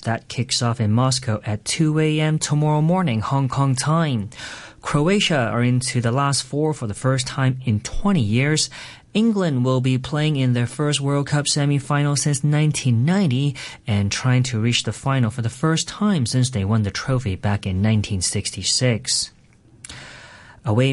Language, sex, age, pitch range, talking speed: English, male, 30-49, 120-155 Hz, 165 wpm